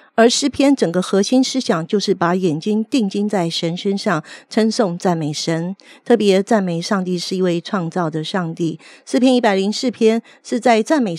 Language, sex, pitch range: Chinese, female, 180-230 Hz